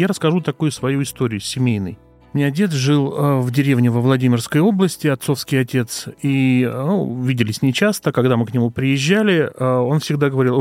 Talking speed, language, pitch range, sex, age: 160 wpm, Russian, 120-150 Hz, male, 30-49